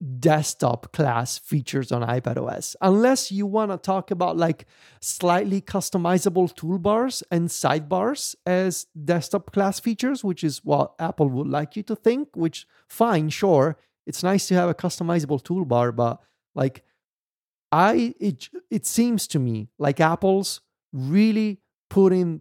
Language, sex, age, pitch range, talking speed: English, male, 30-49, 140-190 Hz, 140 wpm